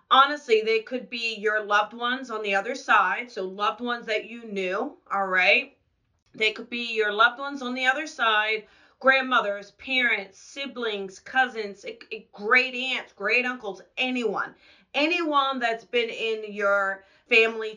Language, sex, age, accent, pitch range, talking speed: English, female, 40-59, American, 200-245 Hz, 150 wpm